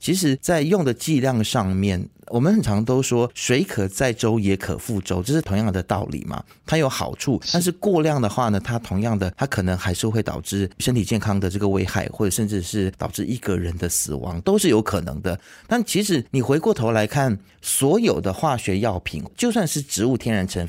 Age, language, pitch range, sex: 30-49, Chinese, 100-140 Hz, male